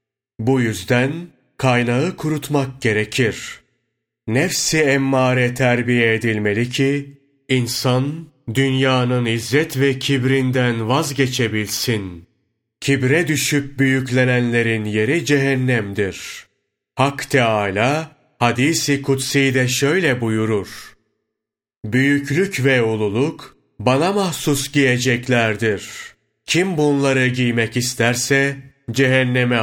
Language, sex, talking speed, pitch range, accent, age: Turkish, male, 80 wpm, 115-140 Hz, native, 30-49